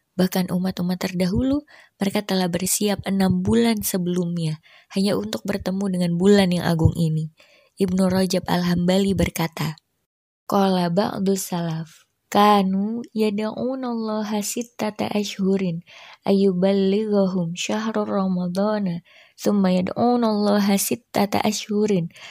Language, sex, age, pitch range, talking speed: Indonesian, female, 20-39, 180-205 Hz, 110 wpm